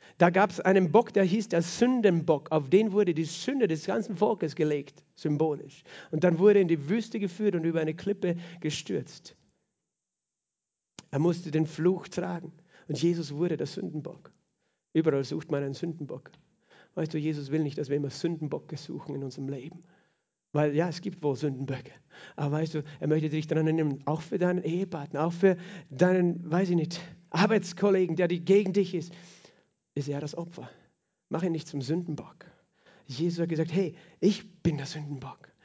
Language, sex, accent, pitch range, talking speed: German, male, German, 155-190 Hz, 175 wpm